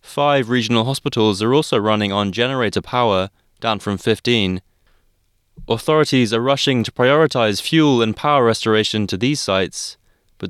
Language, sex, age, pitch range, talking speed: English, male, 20-39, 100-125 Hz, 145 wpm